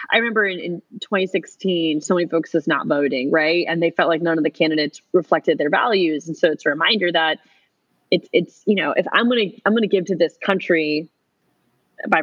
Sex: female